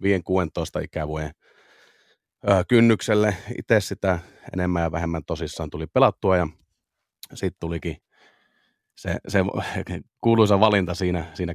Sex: male